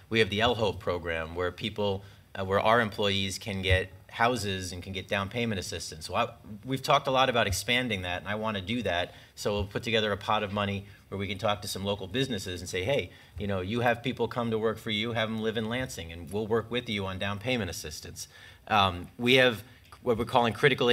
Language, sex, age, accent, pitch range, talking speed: English, male, 30-49, American, 95-115 Hz, 240 wpm